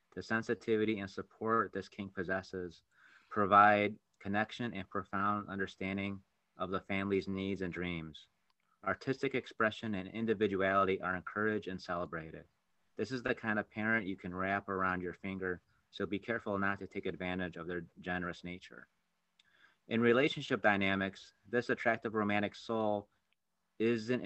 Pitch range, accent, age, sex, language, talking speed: 95-110 Hz, American, 30-49, male, English, 140 wpm